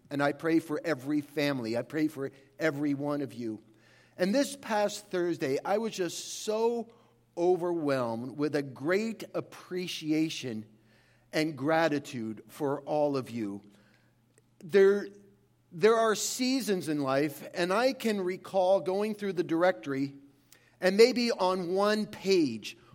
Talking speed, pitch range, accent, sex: 135 wpm, 145-230 Hz, American, male